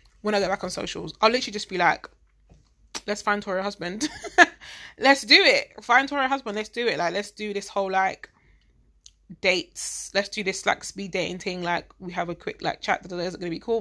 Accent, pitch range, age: British, 180-220 Hz, 20-39